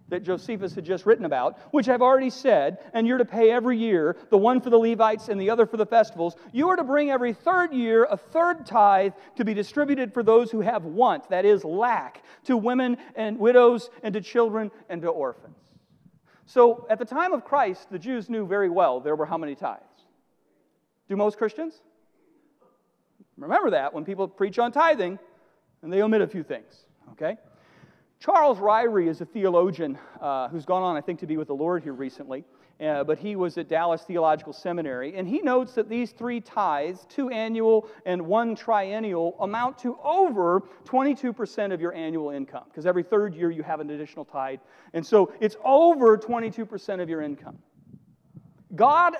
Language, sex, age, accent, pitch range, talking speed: English, male, 40-59, American, 180-245 Hz, 190 wpm